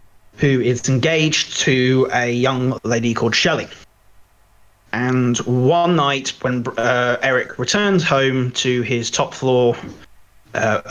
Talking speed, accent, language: 120 wpm, British, English